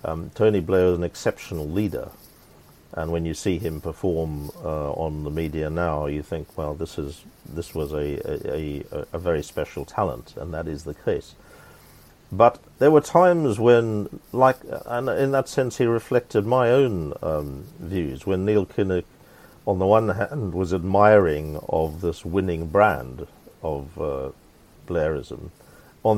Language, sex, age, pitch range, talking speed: English, male, 50-69, 80-105 Hz, 160 wpm